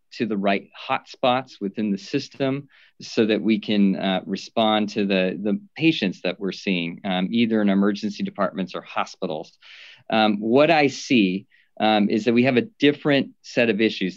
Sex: male